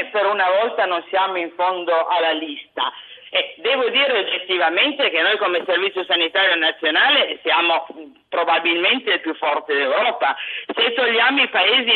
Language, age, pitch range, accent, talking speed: Italian, 40-59, 170-205 Hz, native, 140 wpm